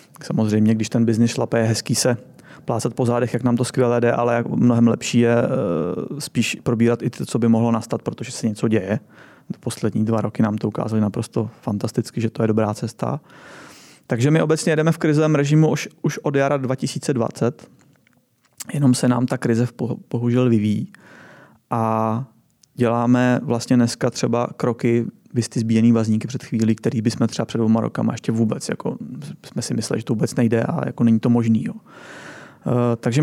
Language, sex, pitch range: Czech, male, 115-130 Hz